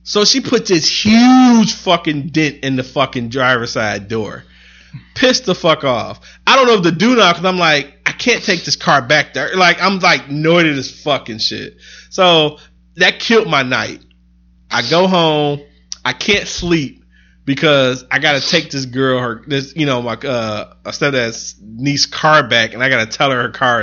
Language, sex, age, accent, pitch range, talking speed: English, male, 20-39, American, 110-150 Hz, 195 wpm